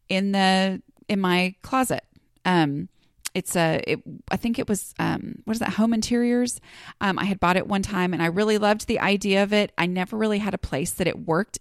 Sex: female